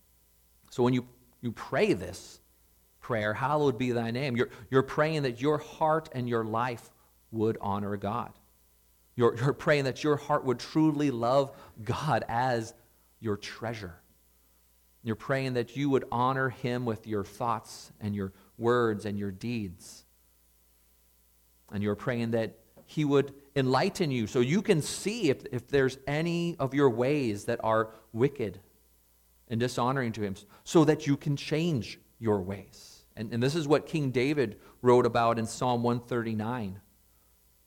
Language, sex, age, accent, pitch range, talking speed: English, male, 40-59, American, 100-140 Hz, 155 wpm